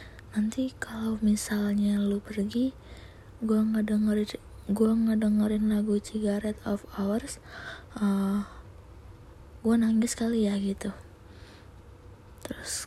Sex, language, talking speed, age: female, Indonesian, 100 wpm, 20-39